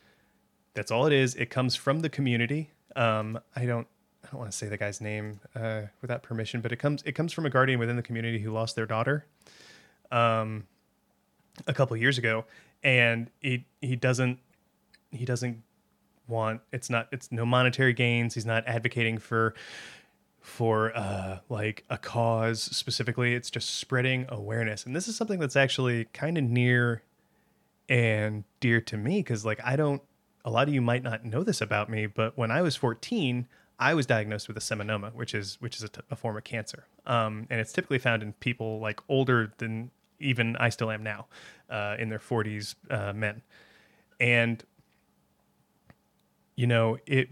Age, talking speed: 20-39, 185 wpm